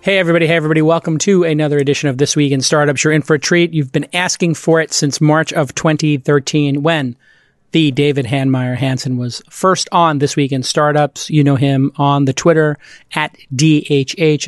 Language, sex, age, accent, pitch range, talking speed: English, male, 30-49, American, 145-170 Hz, 195 wpm